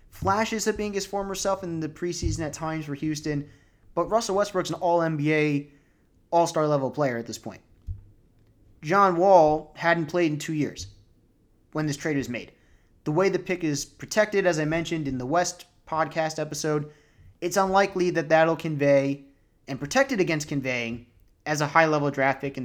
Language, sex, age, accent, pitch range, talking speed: English, male, 30-49, American, 135-175 Hz, 185 wpm